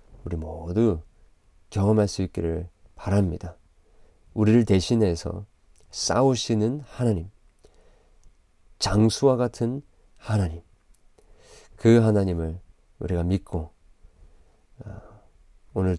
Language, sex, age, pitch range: Korean, male, 40-59, 85-105 Hz